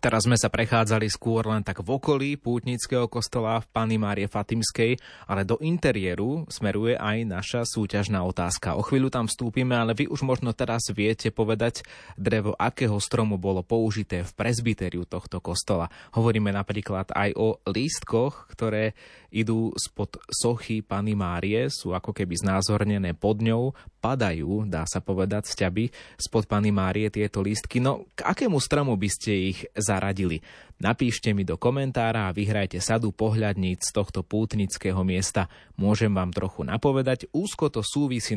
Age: 20-39